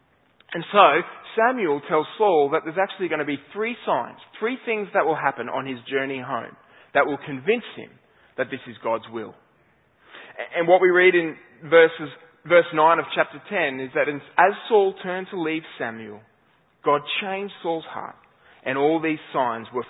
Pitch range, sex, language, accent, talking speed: 145-180 Hz, male, English, Australian, 175 wpm